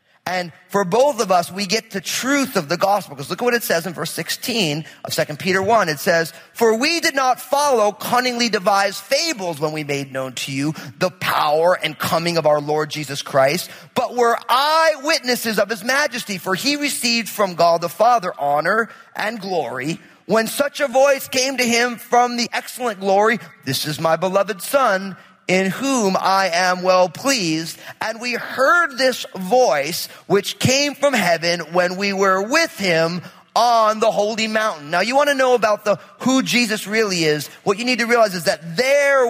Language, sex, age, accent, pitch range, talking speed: English, male, 30-49, American, 180-250 Hz, 190 wpm